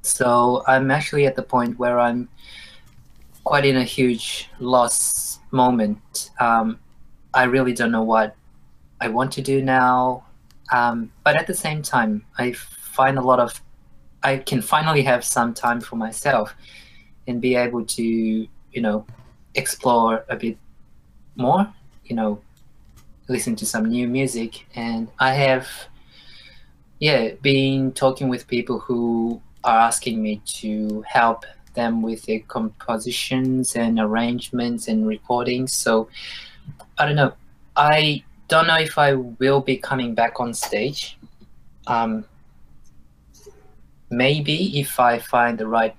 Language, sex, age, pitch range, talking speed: English, male, 20-39, 110-130 Hz, 135 wpm